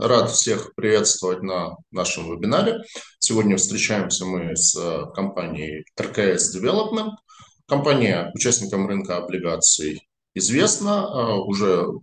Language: Russian